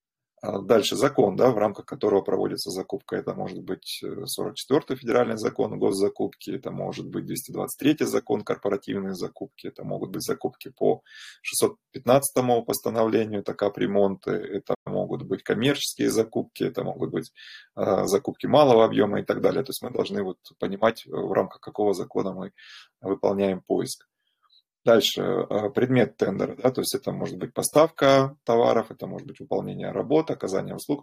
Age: 20-39